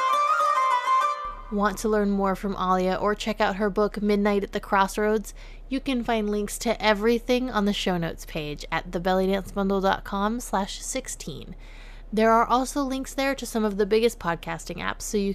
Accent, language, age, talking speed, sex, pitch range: American, English, 20-39, 165 wpm, female, 170-215 Hz